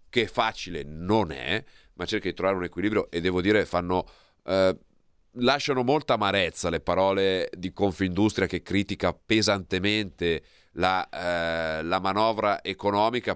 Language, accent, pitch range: Italian, native, 85-100 Hz